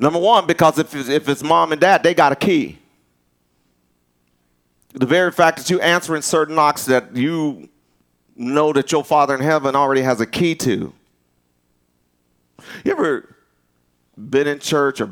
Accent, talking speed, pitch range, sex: American, 160 wpm, 105-160 Hz, male